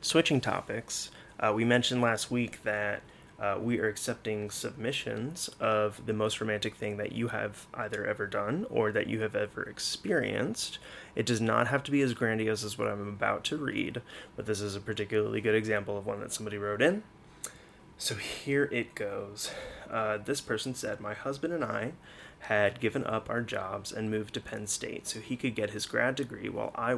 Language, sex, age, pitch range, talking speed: English, male, 30-49, 105-120 Hz, 195 wpm